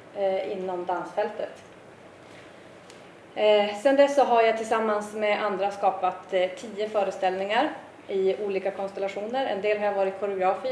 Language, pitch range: Swedish, 185-225 Hz